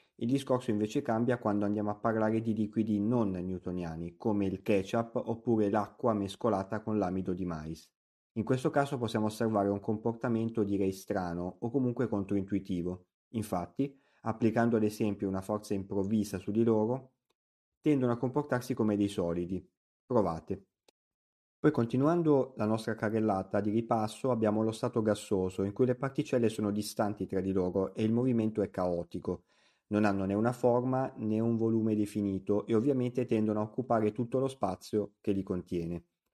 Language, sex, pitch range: Italian, male, 95-115 Hz